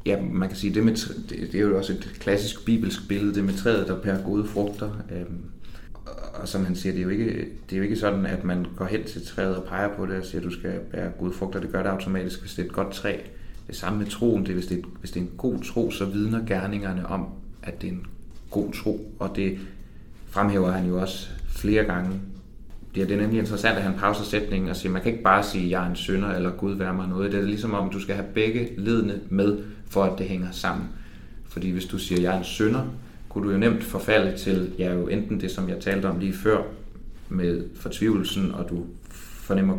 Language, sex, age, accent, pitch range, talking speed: Danish, male, 30-49, native, 90-100 Hz, 250 wpm